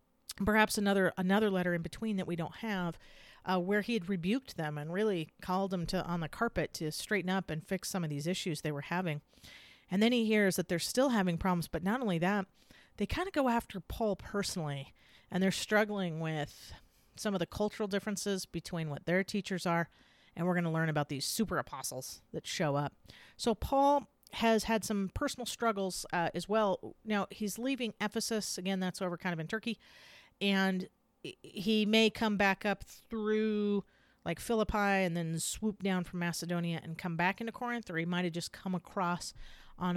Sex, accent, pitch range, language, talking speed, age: female, American, 175-215 Hz, English, 200 wpm, 40-59